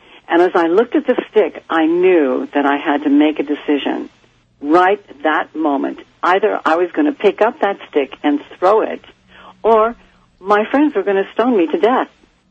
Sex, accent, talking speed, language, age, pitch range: female, American, 195 wpm, English, 70-89, 155-260 Hz